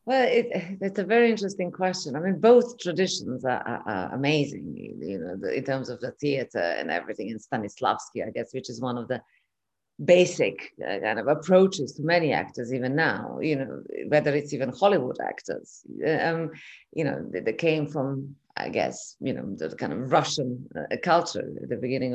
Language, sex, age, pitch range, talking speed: English, female, 30-49, 155-195 Hz, 185 wpm